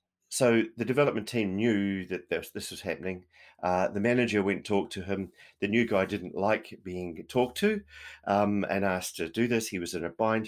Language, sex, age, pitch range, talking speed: English, male, 40-59, 95-120 Hz, 205 wpm